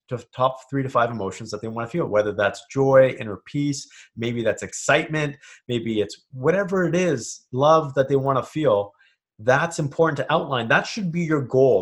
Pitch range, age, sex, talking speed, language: 115-160 Hz, 30-49, male, 200 wpm, English